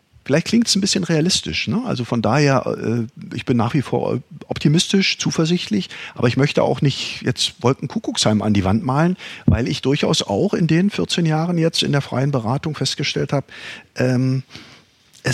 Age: 50-69